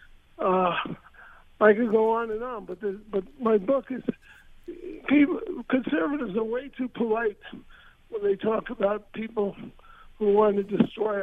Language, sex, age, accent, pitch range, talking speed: English, male, 60-79, American, 200-240 Hz, 145 wpm